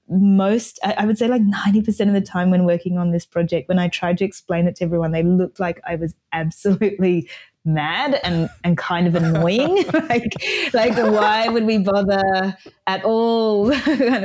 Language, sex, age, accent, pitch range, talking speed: English, female, 20-39, Australian, 185-250 Hz, 180 wpm